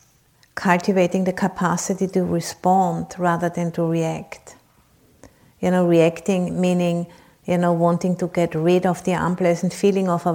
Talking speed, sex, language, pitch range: 145 wpm, female, English, 165-180 Hz